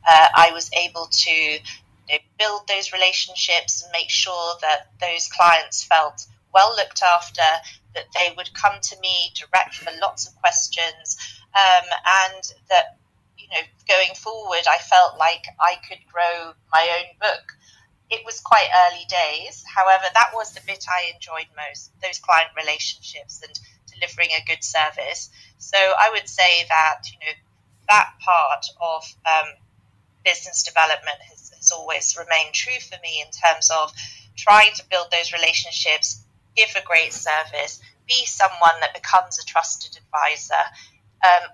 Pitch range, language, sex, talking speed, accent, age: 155-190 Hz, English, female, 155 wpm, British, 30-49